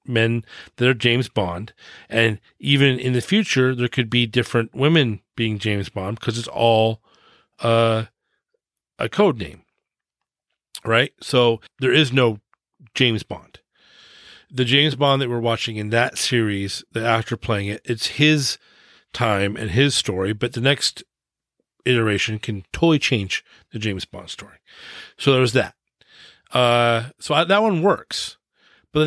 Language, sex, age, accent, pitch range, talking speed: English, male, 40-59, American, 115-140 Hz, 150 wpm